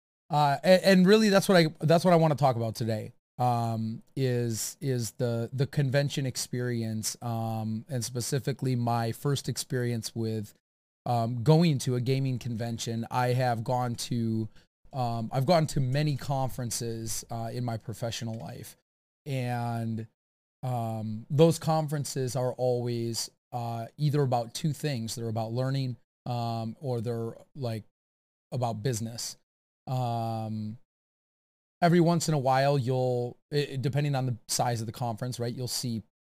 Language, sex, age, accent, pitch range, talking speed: English, male, 30-49, American, 115-135 Hz, 145 wpm